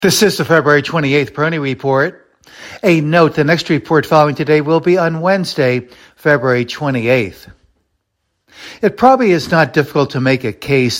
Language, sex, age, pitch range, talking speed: English, male, 60-79, 130-160 Hz, 160 wpm